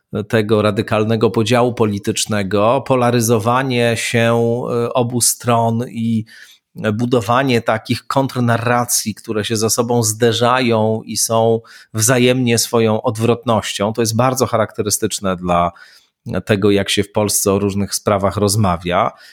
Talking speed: 110 wpm